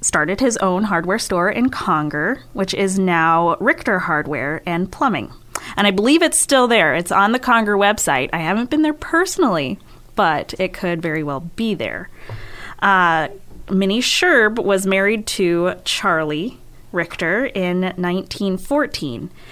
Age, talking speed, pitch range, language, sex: 20-39, 145 wpm, 175-235 Hz, English, female